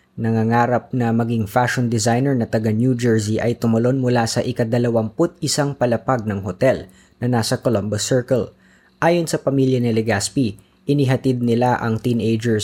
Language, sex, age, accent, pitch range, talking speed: Filipino, female, 20-39, native, 110-135 Hz, 145 wpm